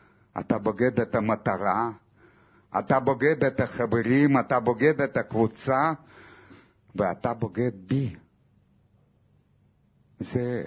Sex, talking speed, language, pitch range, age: male, 90 wpm, Hebrew, 110-135 Hz, 60-79